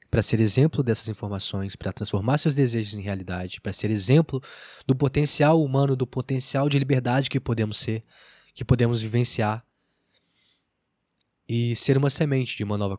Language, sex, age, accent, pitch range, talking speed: Portuguese, male, 20-39, Brazilian, 105-140 Hz, 155 wpm